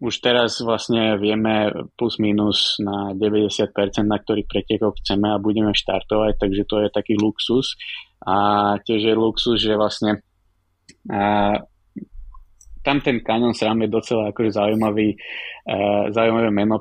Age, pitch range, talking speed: 20-39, 100-110 Hz, 130 wpm